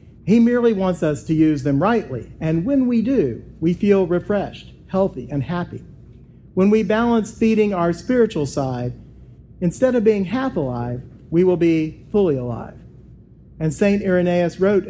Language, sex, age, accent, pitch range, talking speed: English, male, 40-59, American, 150-195 Hz, 155 wpm